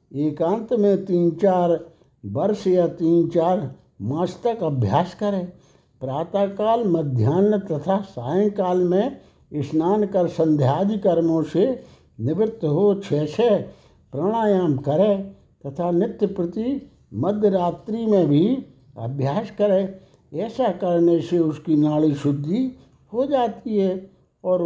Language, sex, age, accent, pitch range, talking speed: Hindi, male, 60-79, native, 150-205 Hz, 110 wpm